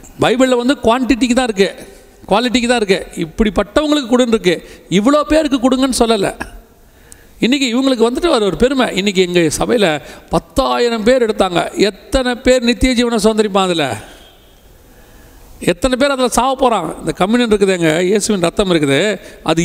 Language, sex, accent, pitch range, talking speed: Tamil, male, native, 170-245 Hz, 135 wpm